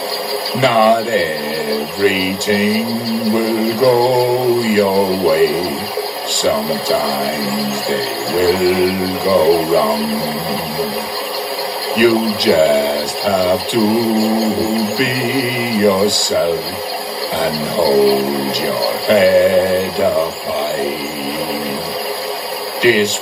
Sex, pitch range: male, 90-115 Hz